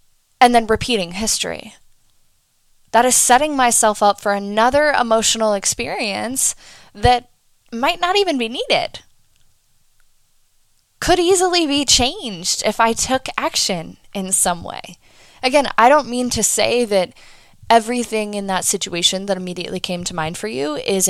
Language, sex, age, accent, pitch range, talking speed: English, female, 10-29, American, 195-240 Hz, 140 wpm